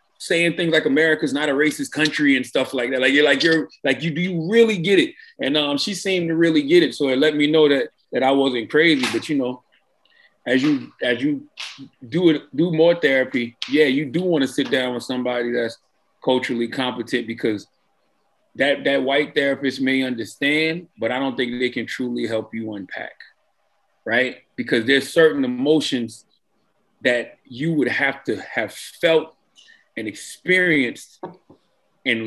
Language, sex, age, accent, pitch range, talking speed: English, male, 30-49, American, 130-180 Hz, 180 wpm